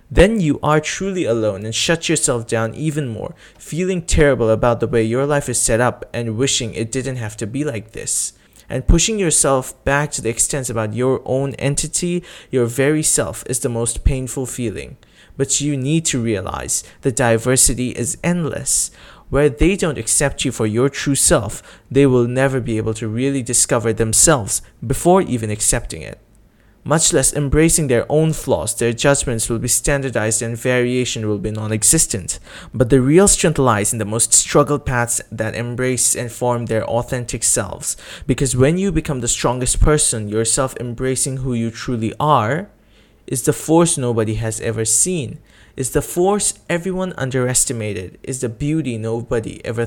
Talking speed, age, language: 170 wpm, 20-39, English